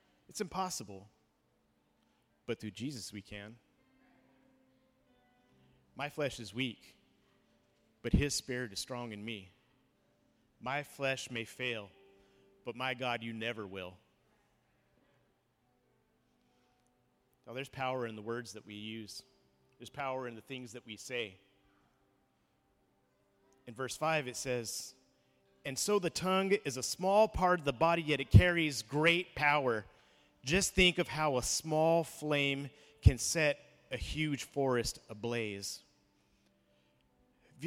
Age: 30-49